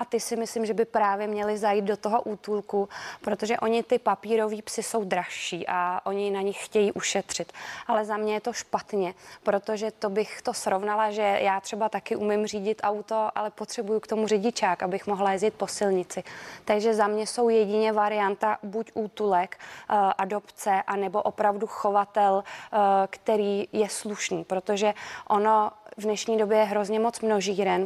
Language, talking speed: Czech, 170 wpm